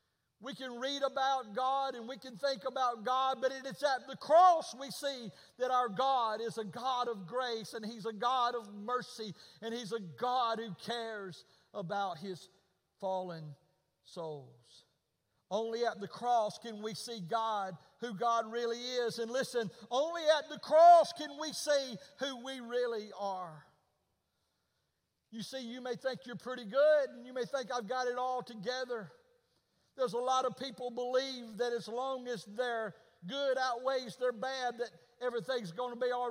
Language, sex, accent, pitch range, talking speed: English, male, American, 225-265 Hz, 175 wpm